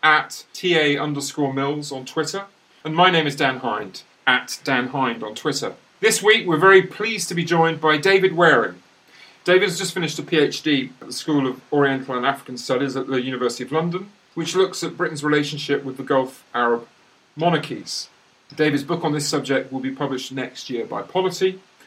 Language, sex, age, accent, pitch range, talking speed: English, male, 40-59, British, 130-165 Hz, 190 wpm